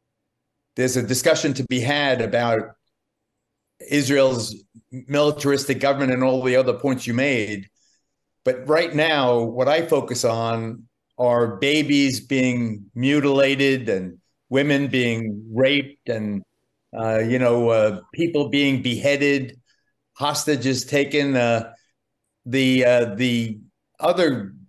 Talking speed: 115 wpm